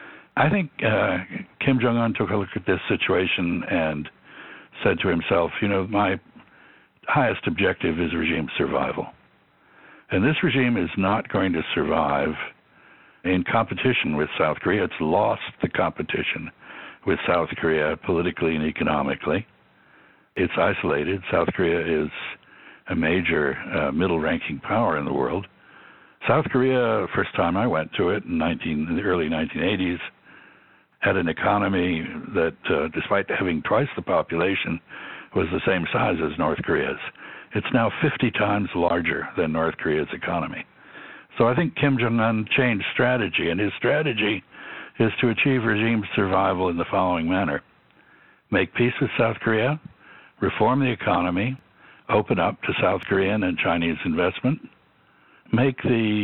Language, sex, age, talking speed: English, male, 60-79, 145 wpm